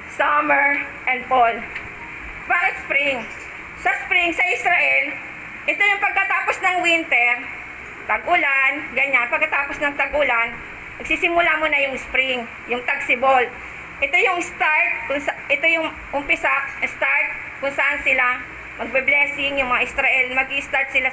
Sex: female